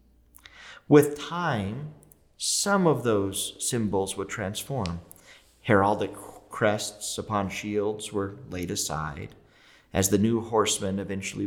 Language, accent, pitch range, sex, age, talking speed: English, American, 85-115 Hz, male, 30-49, 105 wpm